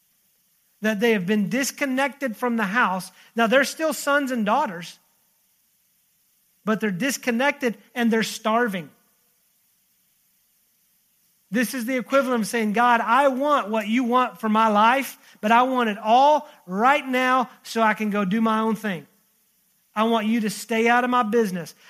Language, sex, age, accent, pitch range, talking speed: English, male, 40-59, American, 185-230 Hz, 160 wpm